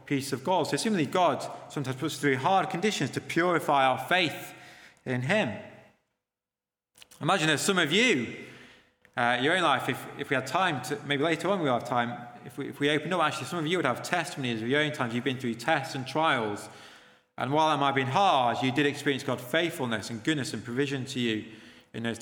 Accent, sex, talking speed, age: British, male, 225 wpm, 30-49